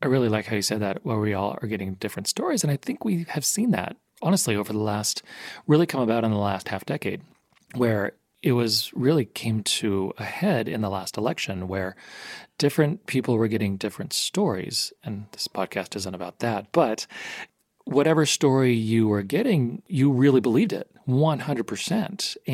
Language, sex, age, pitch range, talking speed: English, male, 40-59, 105-145 Hz, 185 wpm